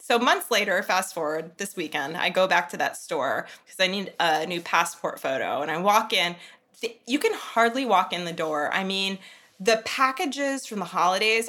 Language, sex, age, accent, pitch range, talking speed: English, female, 20-39, American, 170-235 Hz, 200 wpm